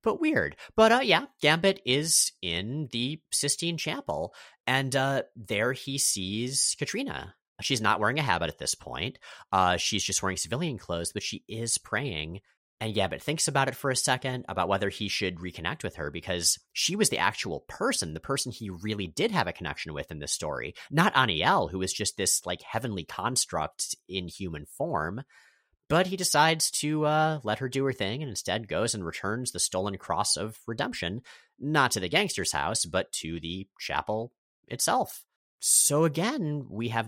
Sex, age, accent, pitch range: male, 30-49, American, 95-135 Hz